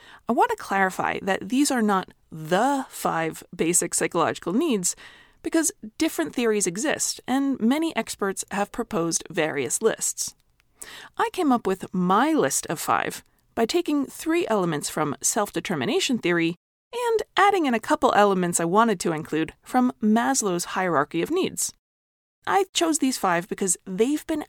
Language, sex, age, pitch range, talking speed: English, female, 30-49, 195-300 Hz, 150 wpm